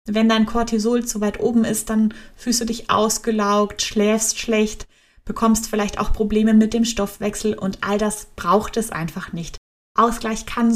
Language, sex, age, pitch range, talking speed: German, female, 20-39, 190-225 Hz, 165 wpm